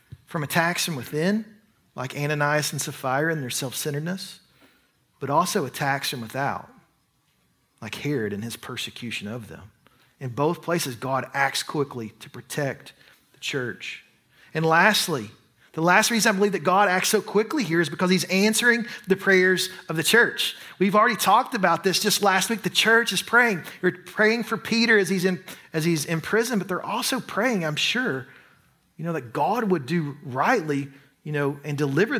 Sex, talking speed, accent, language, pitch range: male, 175 wpm, American, English, 135-195 Hz